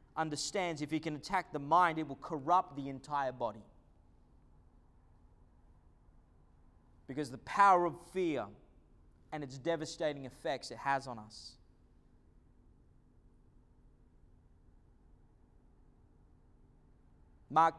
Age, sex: 20-39, male